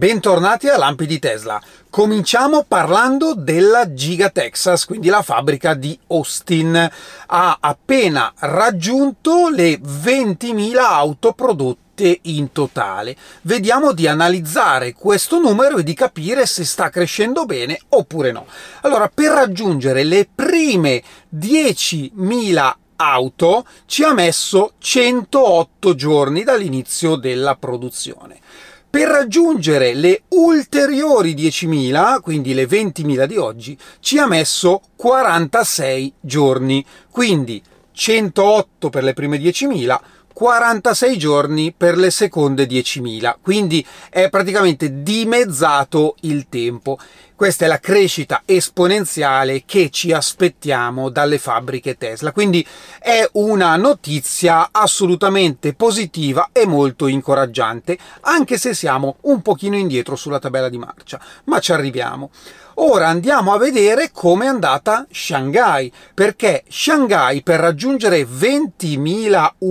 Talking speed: 115 wpm